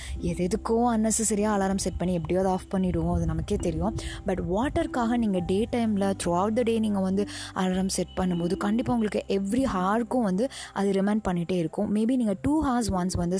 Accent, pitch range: native, 180-225 Hz